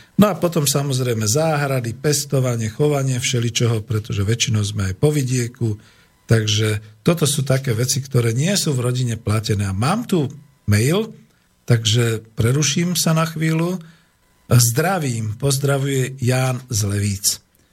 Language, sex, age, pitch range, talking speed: Slovak, male, 50-69, 120-150 Hz, 130 wpm